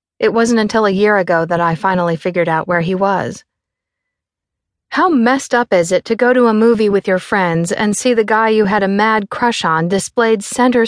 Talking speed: 215 wpm